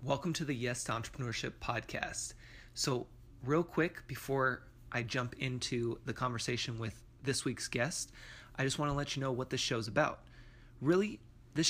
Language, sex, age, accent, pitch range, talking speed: English, male, 20-39, American, 120-150 Hz, 175 wpm